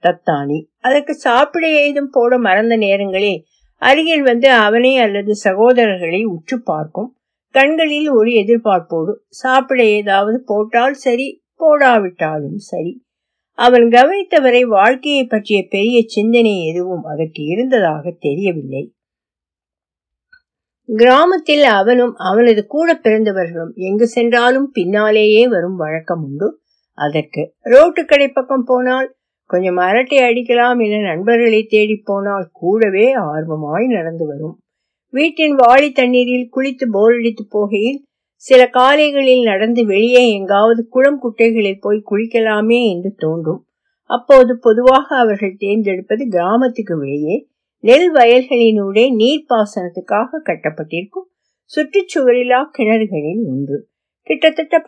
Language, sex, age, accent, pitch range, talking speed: Tamil, female, 50-69, native, 195-260 Hz, 85 wpm